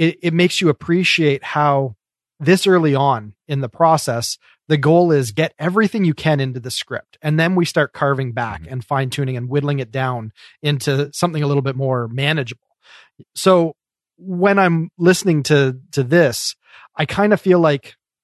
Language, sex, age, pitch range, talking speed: English, male, 30-49, 135-165 Hz, 180 wpm